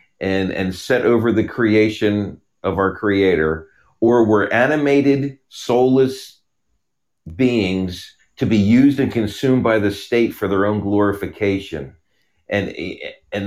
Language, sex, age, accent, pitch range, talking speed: English, male, 40-59, American, 100-140 Hz, 125 wpm